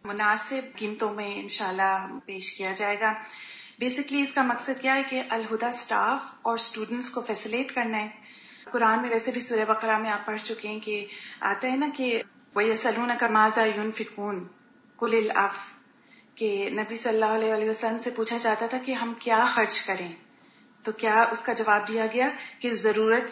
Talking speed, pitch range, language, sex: 165 wpm, 215-240 Hz, Urdu, female